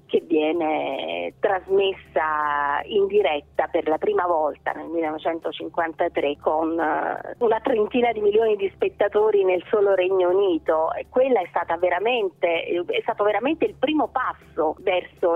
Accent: native